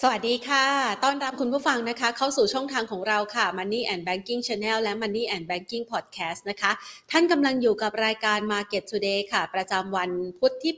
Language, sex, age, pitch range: Thai, female, 30-49, 195-240 Hz